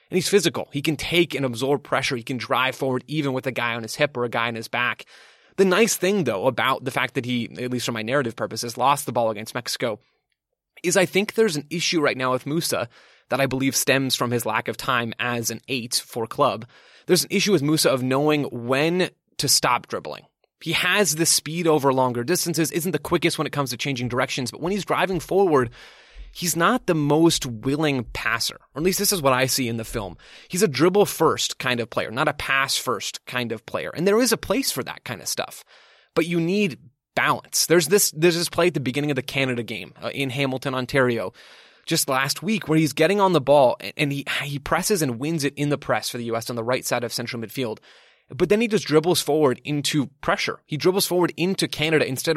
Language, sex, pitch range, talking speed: English, male, 125-170 Hz, 235 wpm